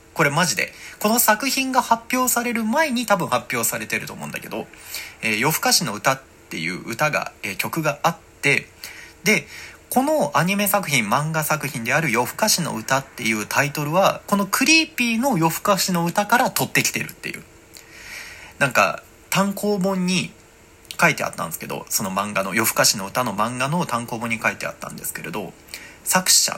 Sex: male